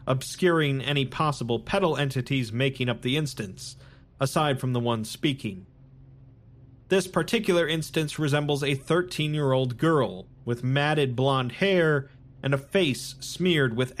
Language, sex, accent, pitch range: English, male, American, 130-160 Hz